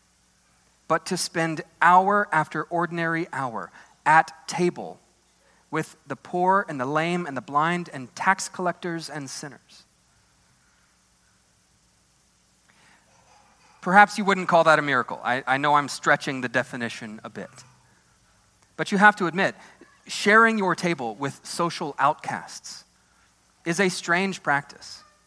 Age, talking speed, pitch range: 30-49, 130 wpm, 135-180 Hz